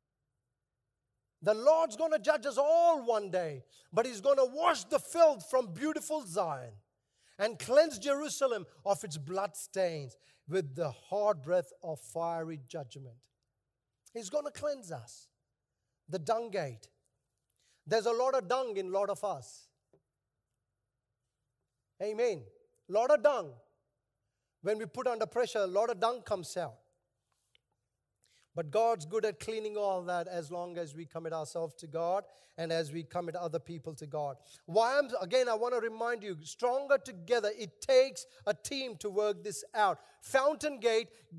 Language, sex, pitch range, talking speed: English, male, 160-265 Hz, 160 wpm